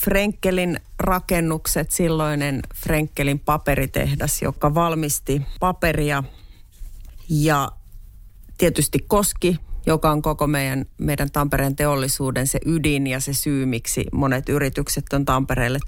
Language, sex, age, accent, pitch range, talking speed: Finnish, female, 30-49, native, 135-180 Hz, 105 wpm